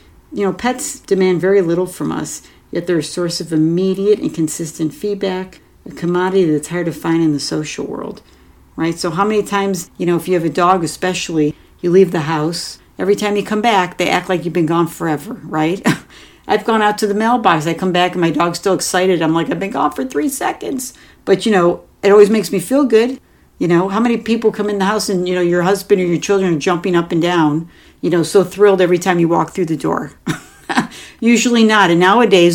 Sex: female